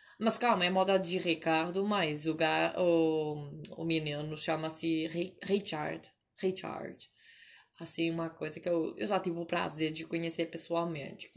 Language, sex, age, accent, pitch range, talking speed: Portuguese, female, 20-39, Brazilian, 165-200 Hz, 160 wpm